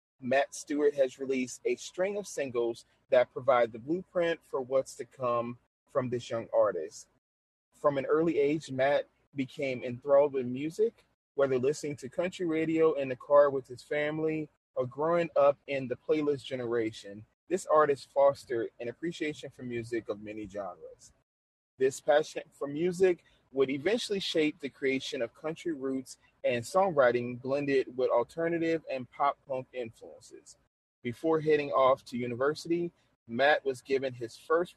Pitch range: 125-165 Hz